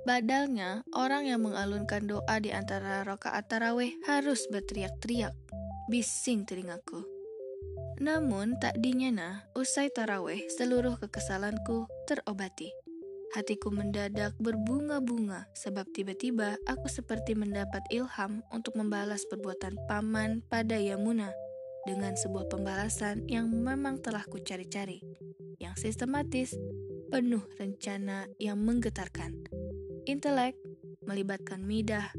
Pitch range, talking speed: 190-235 Hz, 100 wpm